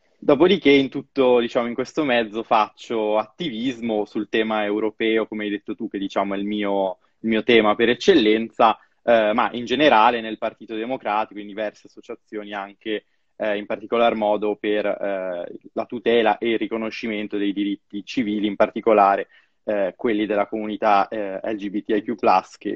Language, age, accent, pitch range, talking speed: Italian, 20-39, native, 105-125 Hz, 160 wpm